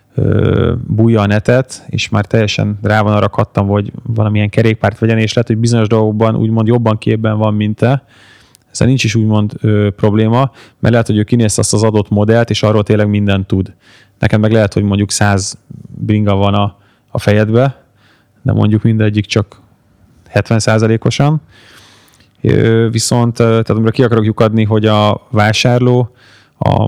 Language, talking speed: Hungarian, 160 wpm